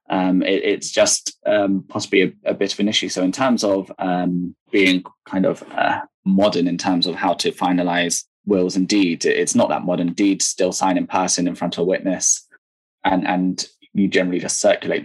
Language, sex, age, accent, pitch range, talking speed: English, male, 10-29, British, 90-100 Hz, 205 wpm